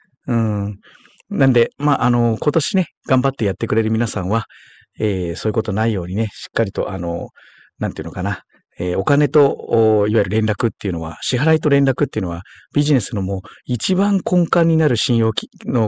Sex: male